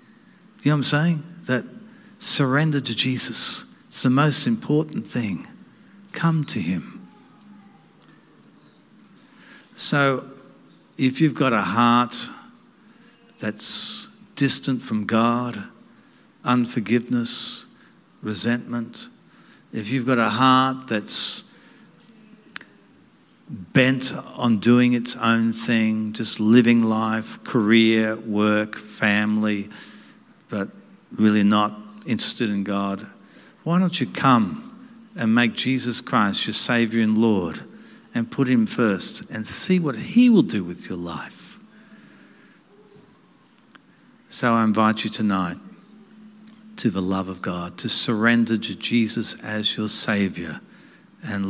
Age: 60-79